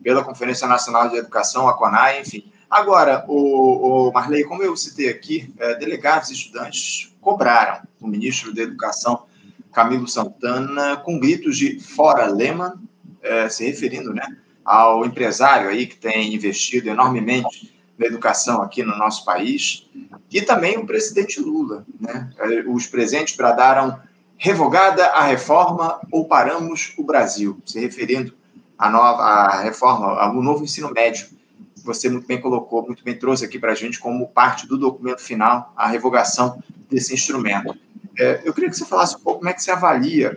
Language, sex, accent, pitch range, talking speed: Portuguese, male, Brazilian, 120-165 Hz, 150 wpm